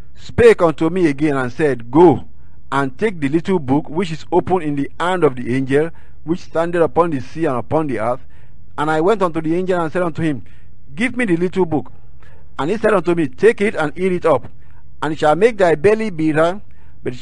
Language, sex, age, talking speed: English, male, 50-69, 225 wpm